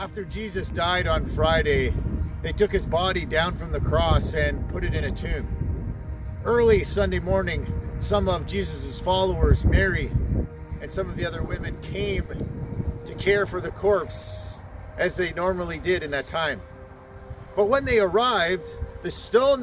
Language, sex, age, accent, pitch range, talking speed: English, male, 50-69, American, 170-235 Hz, 160 wpm